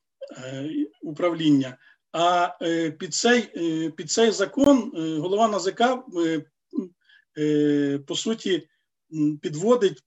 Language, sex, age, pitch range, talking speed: Ukrainian, male, 40-59, 150-215 Hz, 70 wpm